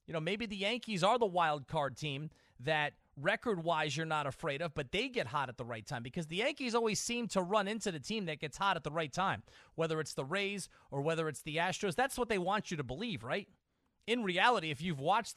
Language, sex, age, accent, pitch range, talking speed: English, male, 30-49, American, 135-185 Hz, 245 wpm